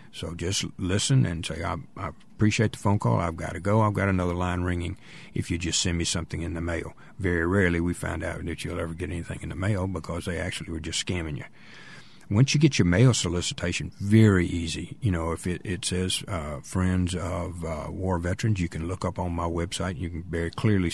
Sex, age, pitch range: male, 50-69, 85-100 Hz